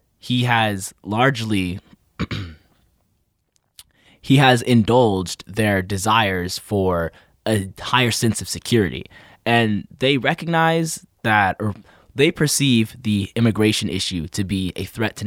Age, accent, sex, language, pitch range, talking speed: 20-39, American, male, English, 90-110 Hz, 115 wpm